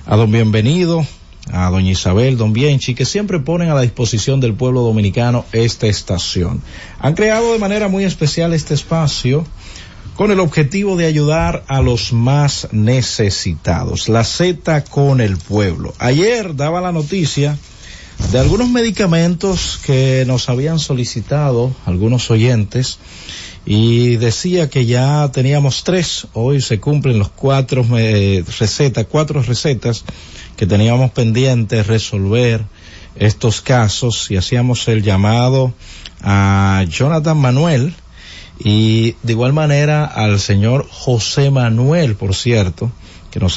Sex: male